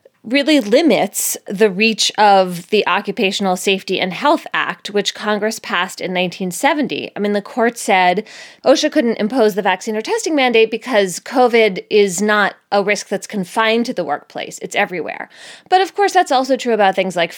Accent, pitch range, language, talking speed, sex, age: American, 190-260 Hz, English, 175 wpm, female, 20-39